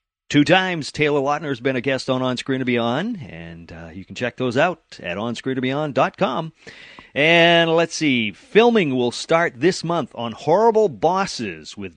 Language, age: English, 40-59